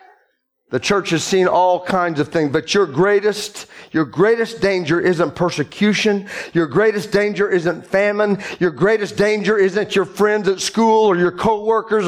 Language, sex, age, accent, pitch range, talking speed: English, male, 40-59, American, 210-280 Hz, 160 wpm